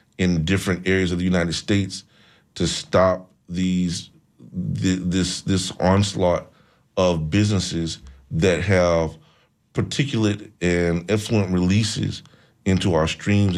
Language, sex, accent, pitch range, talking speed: English, male, American, 85-105 Hz, 105 wpm